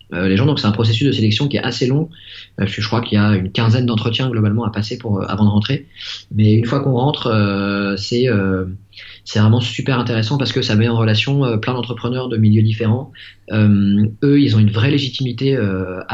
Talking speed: 230 wpm